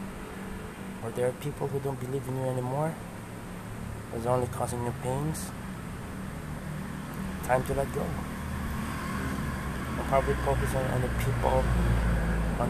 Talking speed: 125 wpm